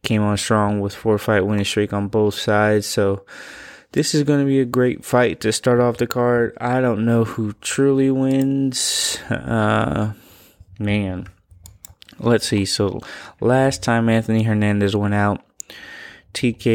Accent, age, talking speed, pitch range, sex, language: American, 20-39, 150 wpm, 105-120 Hz, male, English